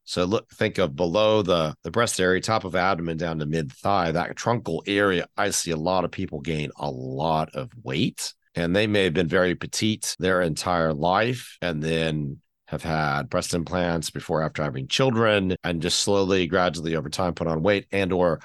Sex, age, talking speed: male, 40-59, 200 wpm